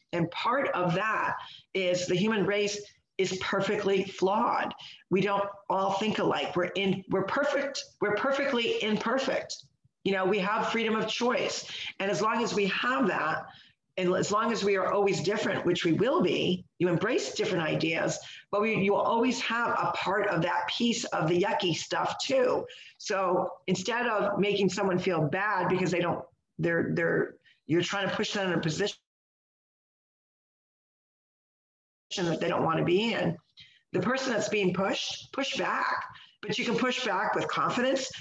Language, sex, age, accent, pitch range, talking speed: English, female, 50-69, American, 185-235 Hz, 175 wpm